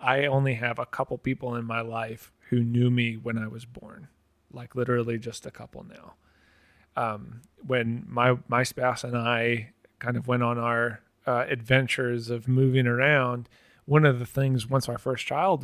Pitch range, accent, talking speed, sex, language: 115-135 Hz, American, 180 wpm, male, English